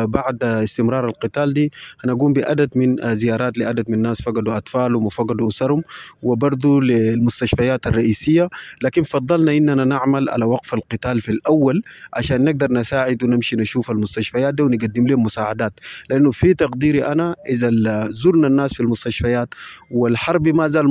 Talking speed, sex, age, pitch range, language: 140 wpm, male, 30-49, 115-140 Hz, English